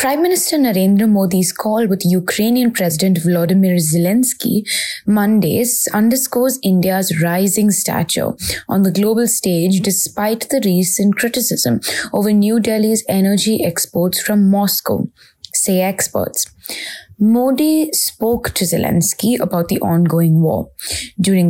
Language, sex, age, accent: English, female, 20-39, Indian